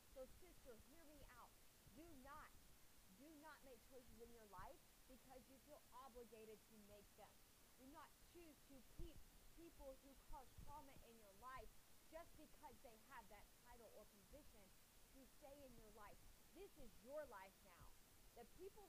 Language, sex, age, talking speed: English, female, 30-49, 165 wpm